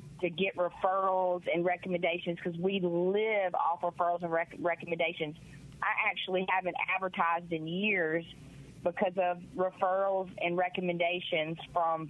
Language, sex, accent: English, female, American